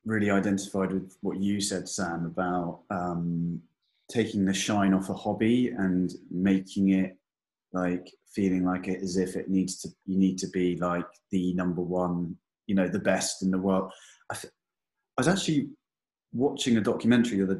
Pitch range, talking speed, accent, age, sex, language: 90-100 Hz, 175 wpm, British, 20-39, male, English